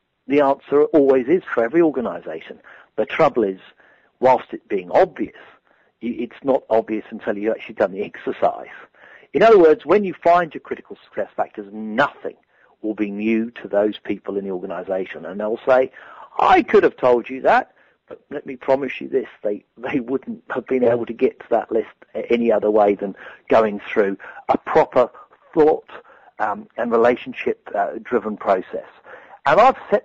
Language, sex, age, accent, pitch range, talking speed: English, male, 50-69, British, 110-145 Hz, 170 wpm